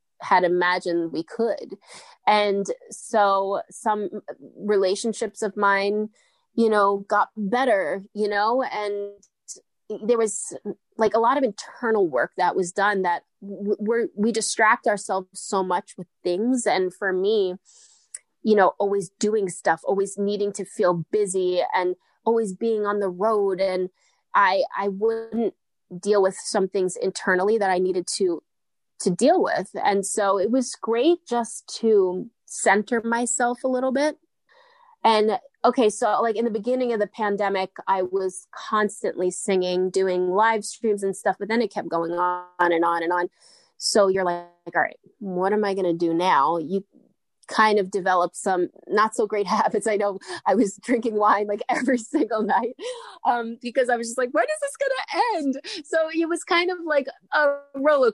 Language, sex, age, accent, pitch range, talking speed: English, female, 20-39, American, 195-250 Hz, 170 wpm